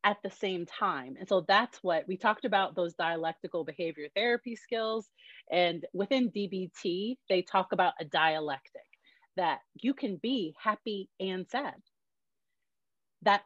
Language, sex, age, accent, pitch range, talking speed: English, female, 30-49, American, 175-230 Hz, 145 wpm